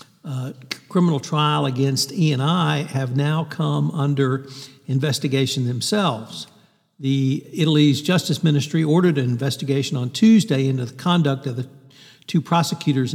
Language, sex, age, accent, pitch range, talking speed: English, male, 60-79, American, 130-150 Hz, 125 wpm